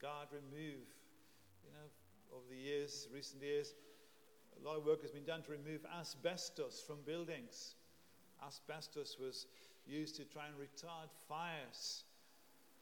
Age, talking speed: 50-69, 135 wpm